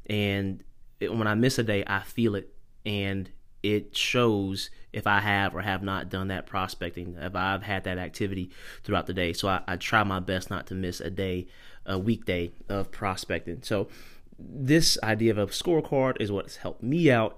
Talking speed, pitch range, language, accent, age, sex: 190 wpm, 95-110 Hz, English, American, 30-49, male